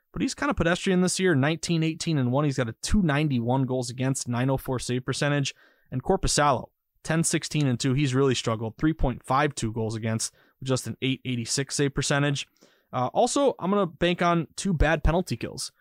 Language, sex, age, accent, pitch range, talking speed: English, male, 20-39, American, 130-160 Hz, 185 wpm